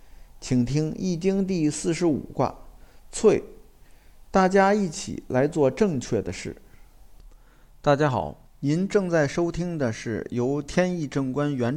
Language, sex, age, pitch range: Chinese, male, 50-69, 125-170 Hz